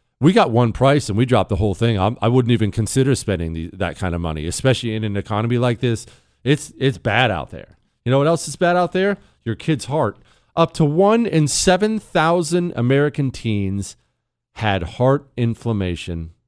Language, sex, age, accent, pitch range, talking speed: English, male, 40-59, American, 105-145 Hz, 195 wpm